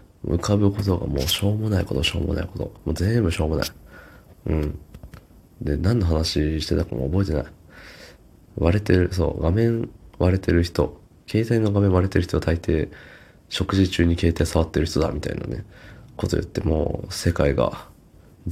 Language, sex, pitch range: Japanese, male, 80-100 Hz